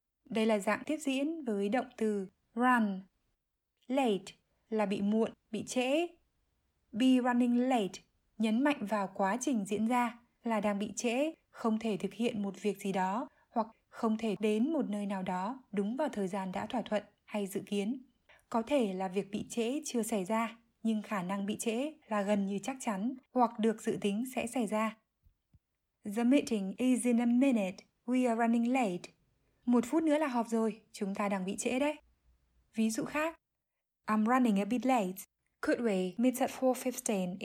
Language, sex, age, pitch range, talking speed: Vietnamese, female, 20-39, 210-255 Hz, 185 wpm